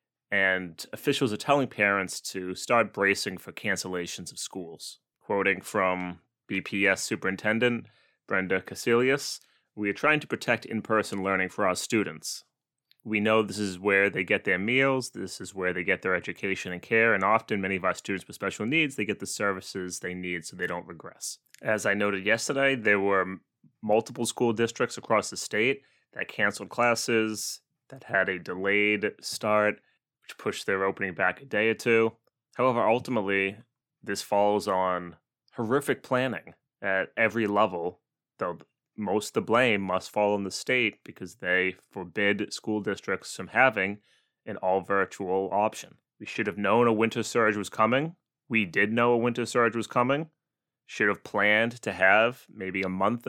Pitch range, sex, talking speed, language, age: 95-115 Hz, male, 170 wpm, English, 30-49